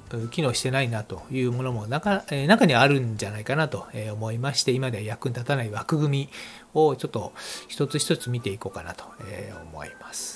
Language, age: Japanese, 40-59